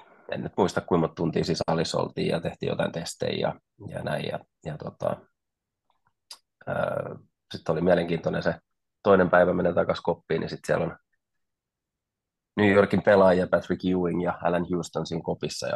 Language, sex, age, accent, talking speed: Finnish, male, 30-49, native, 150 wpm